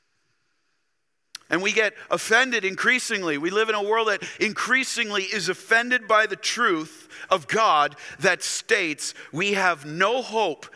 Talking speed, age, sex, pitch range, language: 140 wpm, 40-59, male, 130-205 Hz, English